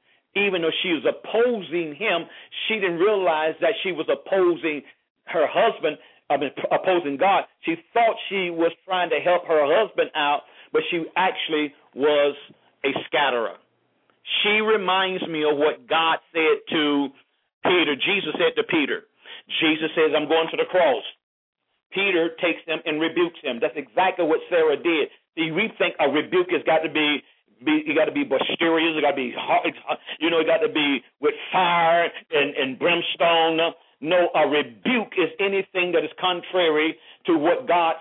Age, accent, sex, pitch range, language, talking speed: 50-69, American, male, 160-215 Hz, English, 165 wpm